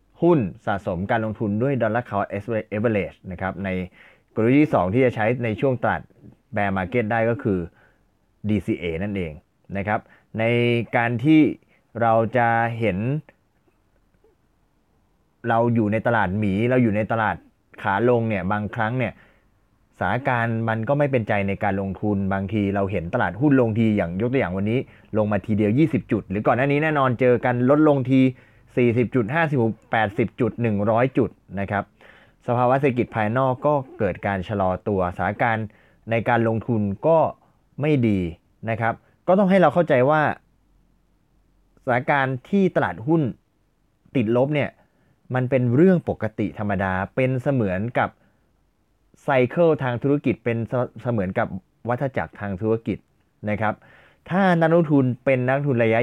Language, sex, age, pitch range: Thai, male, 20-39, 100-130 Hz